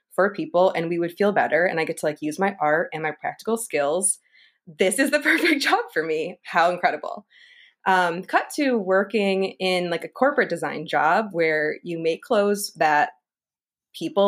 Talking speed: 185 wpm